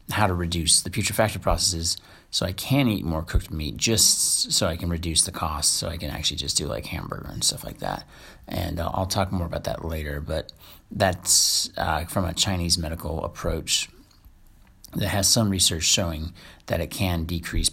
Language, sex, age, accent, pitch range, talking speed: English, male, 30-49, American, 80-100 Hz, 190 wpm